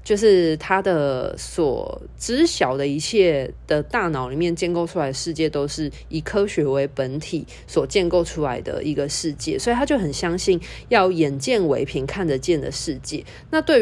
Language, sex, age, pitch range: Chinese, female, 20-39, 150-215 Hz